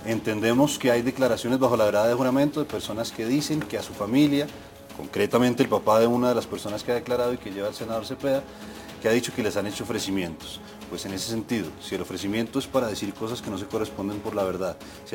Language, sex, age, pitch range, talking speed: Spanish, male, 30-49, 100-130 Hz, 240 wpm